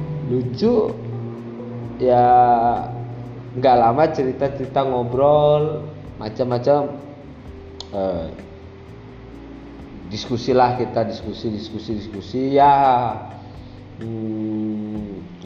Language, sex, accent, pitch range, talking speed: Indonesian, male, native, 110-150 Hz, 55 wpm